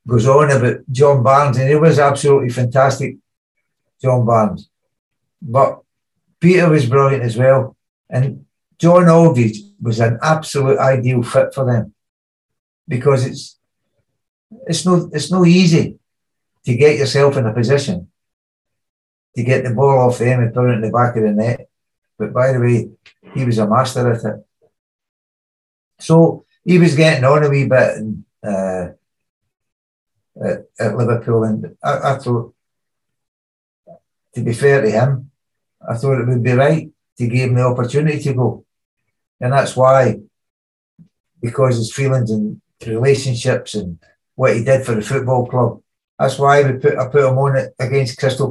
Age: 60-79